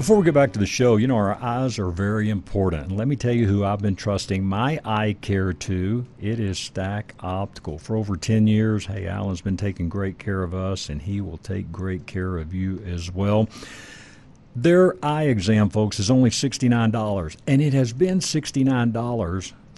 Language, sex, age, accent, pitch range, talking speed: English, male, 60-79, American, 100-125 Hz, 195 wpm